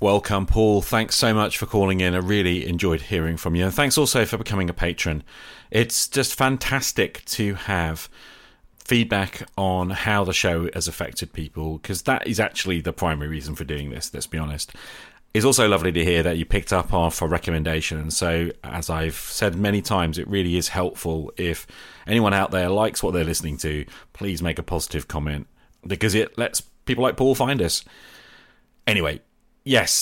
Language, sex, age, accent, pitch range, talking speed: English, male, 40-59, British, 85-115 Hz, 185 wpm